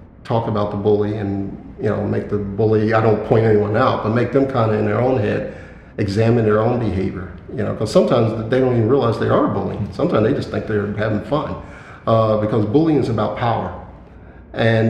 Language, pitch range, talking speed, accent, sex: English, 100-115 Hz, 215 wpm, American, male